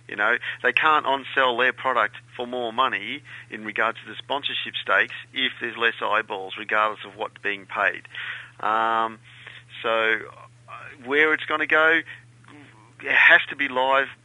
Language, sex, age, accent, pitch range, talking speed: English, male, 40-59, Australian, 120-150 Hz, 155 wpm